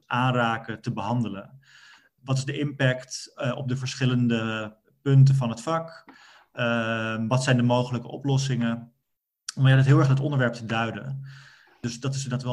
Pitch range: 120-135 Hz